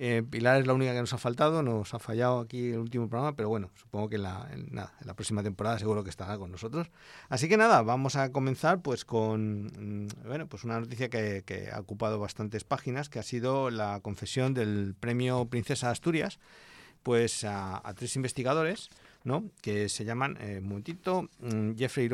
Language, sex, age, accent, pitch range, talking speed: English, male, 50-69, Spanish, 110-145 Hz, 205 wpm